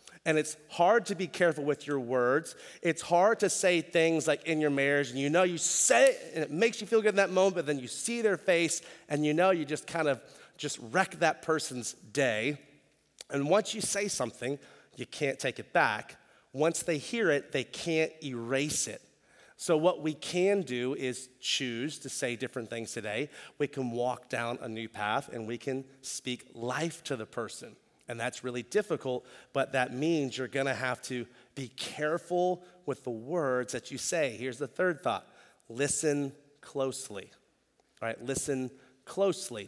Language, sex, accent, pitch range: English, male, American, 130-170 Hz